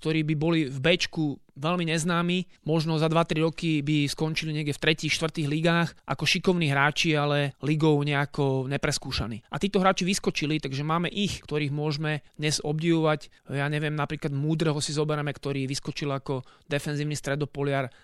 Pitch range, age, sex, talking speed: 140-160 Hz, 30-49, male, 155 wpm